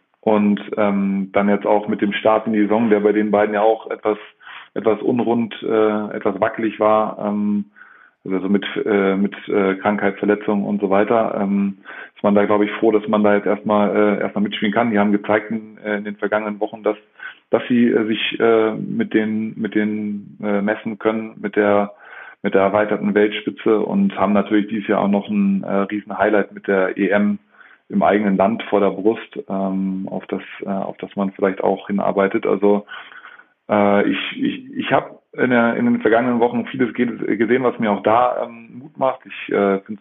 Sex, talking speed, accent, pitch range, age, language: male, 195 wpm, German, 100-110 Hz, 20-39, German